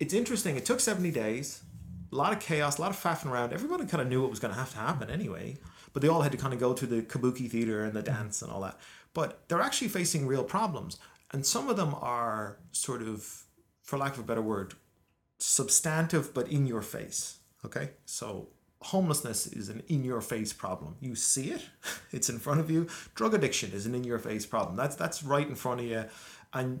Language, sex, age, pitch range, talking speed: English, male, 30-49, 110-145 Hz, 230 wpm